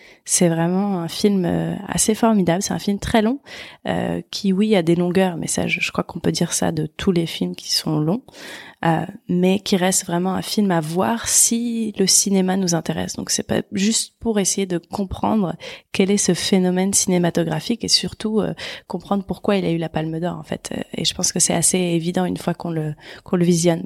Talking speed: 220 wpm